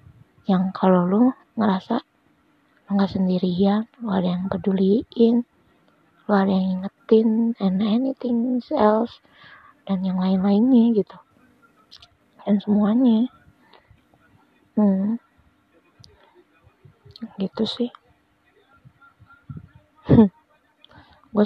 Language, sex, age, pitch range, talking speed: Indonesian, female, 20-39, 185-230 Hz, 80 wpm